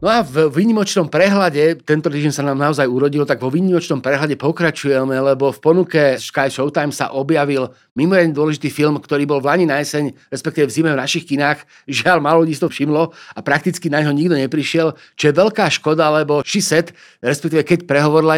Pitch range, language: 140-165 Hz, Slovak